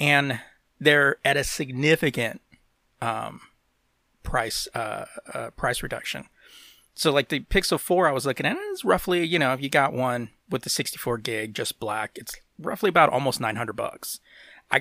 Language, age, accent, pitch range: English, 30-49, American, 120-150 Hz